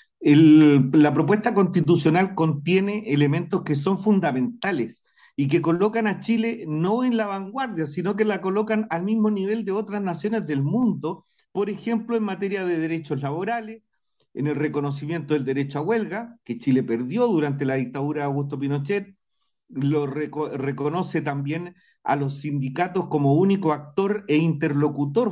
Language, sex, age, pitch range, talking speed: Spanish, male, 50-69, 145-200 Hz, 150 wpm